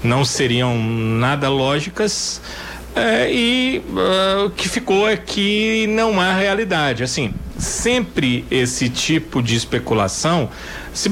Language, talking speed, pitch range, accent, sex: Portuguese, 110 wpm, 125-175 Hz, Brazilian, male